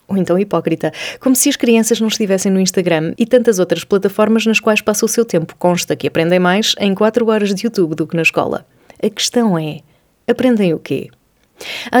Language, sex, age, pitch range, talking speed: Portuguese, female, 20-39, 165-210 Hz, 205 wpm